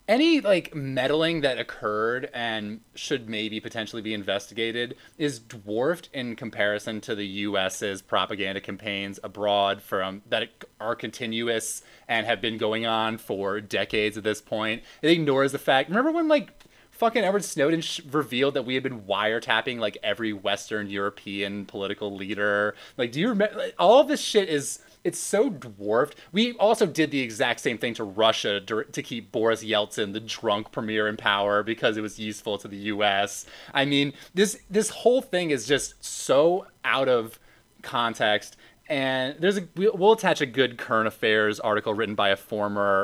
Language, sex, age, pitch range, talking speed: English, male, 30-49, 105-140 Hz, 170 wpm